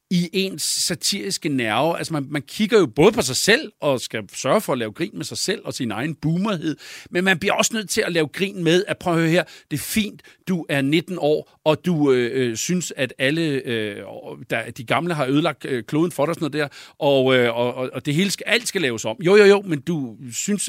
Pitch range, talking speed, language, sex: 145-195 Hz, 245 wpm, Danish, male